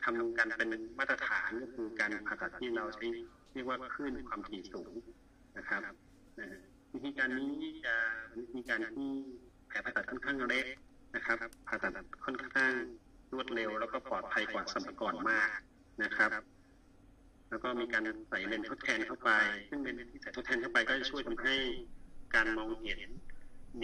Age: 30-49